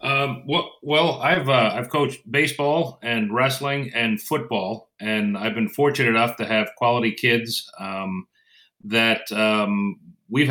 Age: 40-59